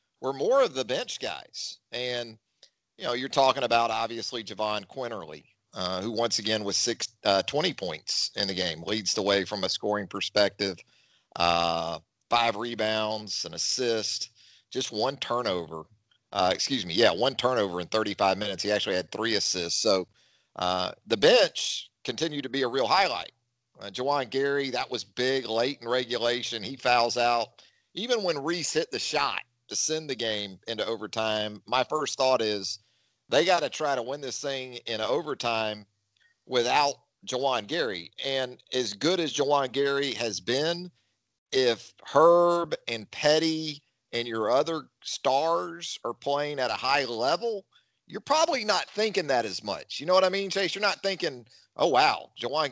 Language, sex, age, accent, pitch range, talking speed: English, male, 40-59, American, 105-140 Hz, 170 wpm